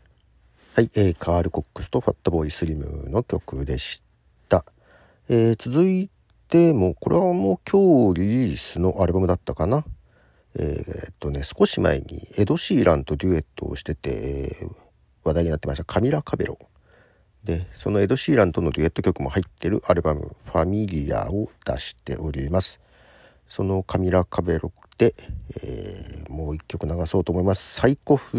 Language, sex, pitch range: Japanese, male, 80-110 Hz